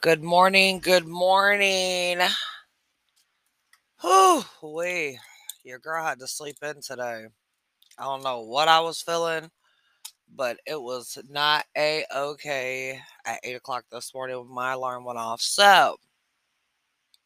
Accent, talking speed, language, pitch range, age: American, 120 wpm, English, 130-170 Hz, 20-39